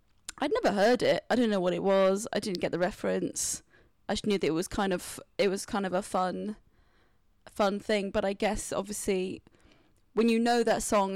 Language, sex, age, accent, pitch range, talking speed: English, female, 20-39, British, 195-230 Hz, 215 wpm